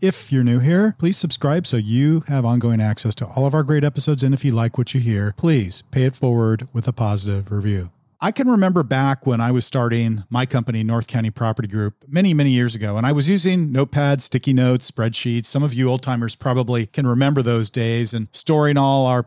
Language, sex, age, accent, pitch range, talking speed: English, male, 40-59, American, 115-140 Hz, 225 wpm